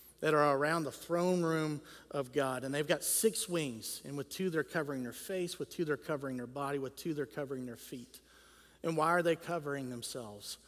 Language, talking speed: English, 215 wpm